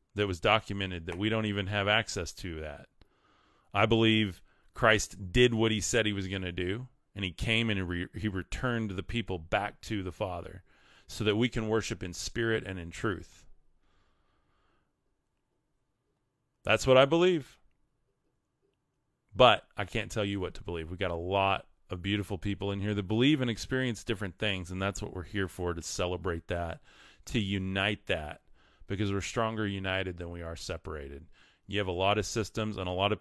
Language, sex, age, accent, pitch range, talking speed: English, male, 30-49, American, 95-115 Hz, 185 wpm